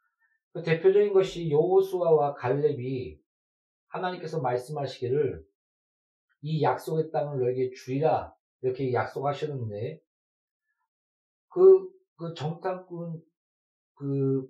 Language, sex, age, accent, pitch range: Korean, male, 40-59, native, 130-175 Hz